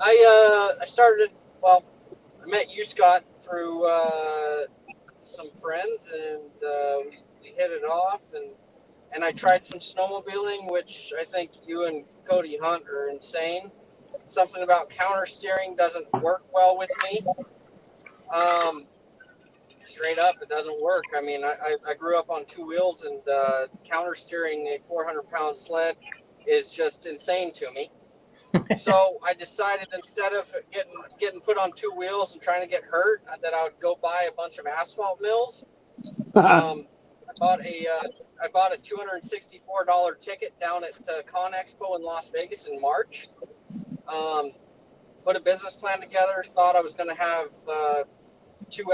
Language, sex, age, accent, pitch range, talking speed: English, male, 30-49, American, 165-200 Hz, 160 wpm